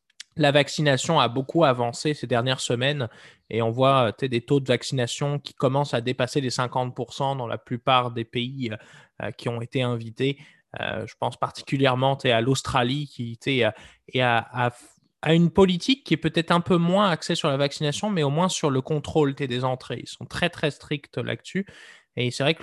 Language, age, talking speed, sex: French, 20-39, 190 wpm, male